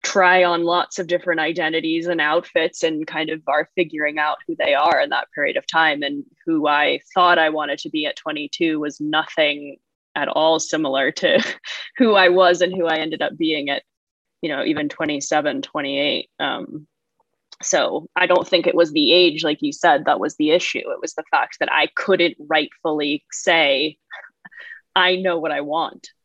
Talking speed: 190 wpm